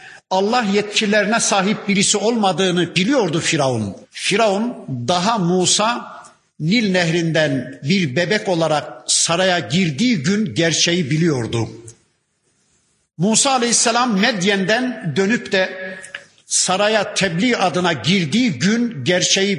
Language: Turkish